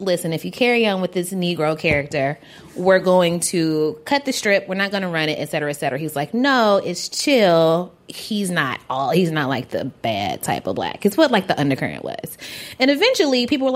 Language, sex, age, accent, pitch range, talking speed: English, female, 20-39, American, 165-250 Hz, 225 wpm